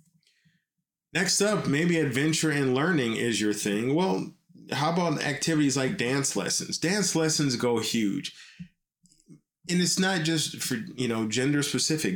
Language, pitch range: English, 120-165 Hz